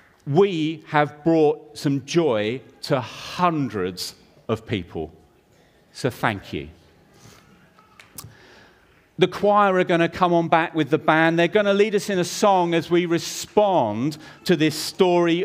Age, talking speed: 40-59, 145 wpm